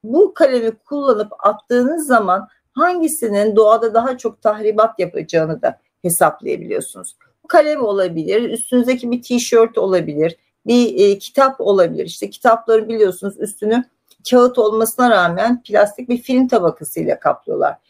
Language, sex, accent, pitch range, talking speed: Turkish, female, native, 210-265 Hz, 120 wpm